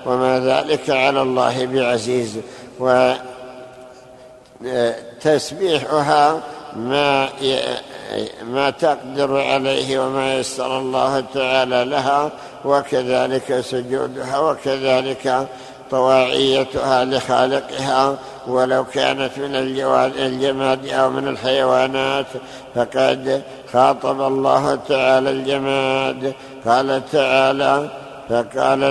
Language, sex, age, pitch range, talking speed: Arabic, male, 60-79, 130-140 Hz, 75 wpm